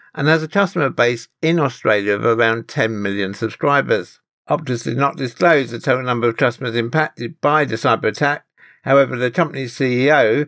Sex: male